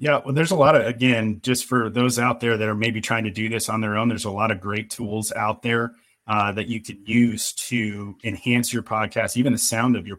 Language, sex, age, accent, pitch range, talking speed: English, male, 30-49, American, 110-125 Hz, 260 wpm